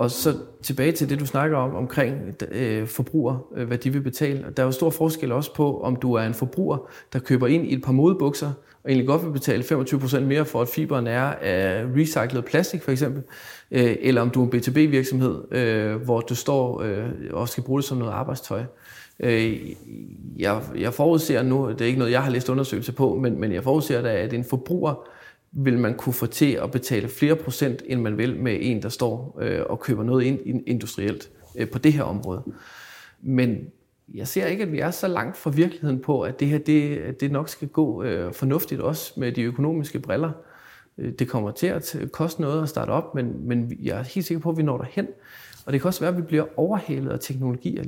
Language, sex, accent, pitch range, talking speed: Danish, male, native, 120-150 Hz, 215 wpm